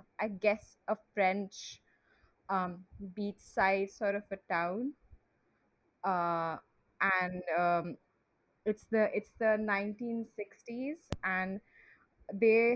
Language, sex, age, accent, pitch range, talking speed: English, female, 20-39, Indian, 175-210 Hz, 100 wpm